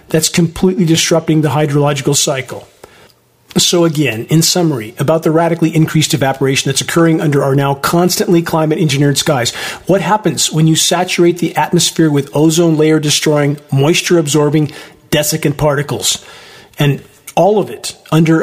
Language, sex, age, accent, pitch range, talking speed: English, male, 50-69, American, 145-170 Hz, 145 wpm